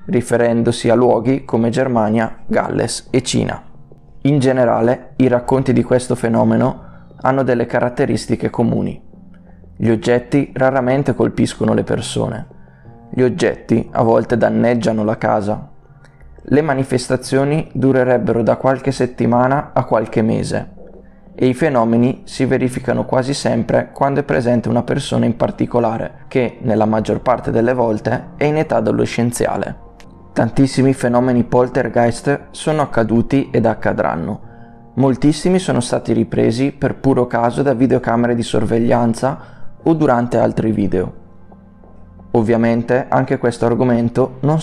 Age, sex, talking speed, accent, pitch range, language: 20-39, male, 125 wpm, native, 115-130 Hz, Italian